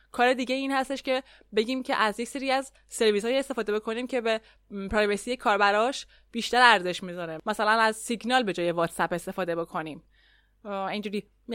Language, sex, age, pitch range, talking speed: Persian, female, 20-39, 190-235 Hz, 155 wpm